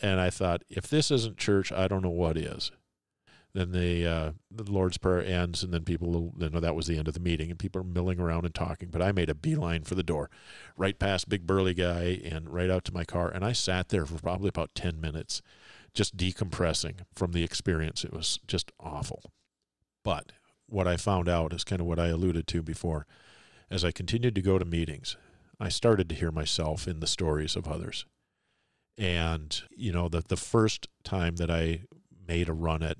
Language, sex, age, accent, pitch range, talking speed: English, male, 50-69, American, 85-95 Hz, 215 wpm